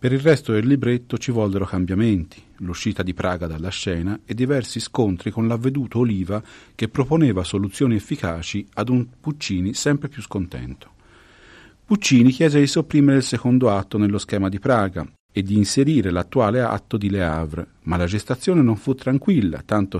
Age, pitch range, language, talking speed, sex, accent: 50-69, 95-130 Hz, Italian, 165 wpm, male, native